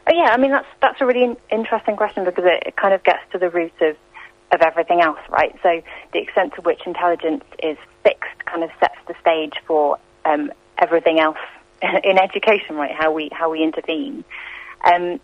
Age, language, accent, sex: 30-49, English, British, female